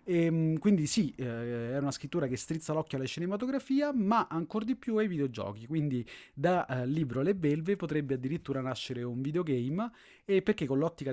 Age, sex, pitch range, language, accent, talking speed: 30-49, male, 120-155 Hz, Italian, native, 175 wpm